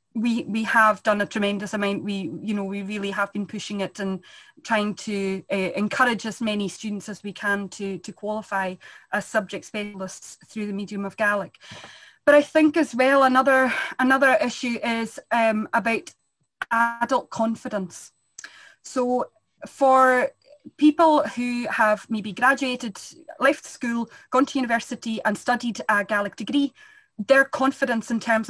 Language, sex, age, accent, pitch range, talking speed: English, female, 20-39, British, 210-260 Hz, 150 wpm